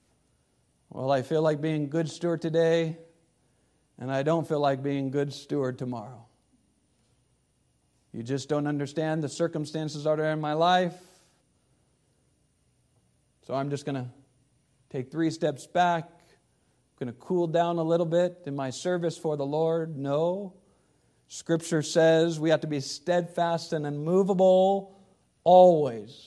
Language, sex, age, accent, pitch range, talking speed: English, male, 50-69, American, 145-185 Hz, 145 wpm